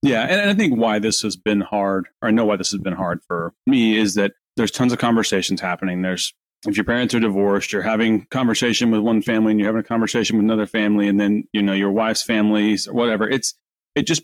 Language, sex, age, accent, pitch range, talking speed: English, male, 30-49, American, 100-120 Hz, 245 wpm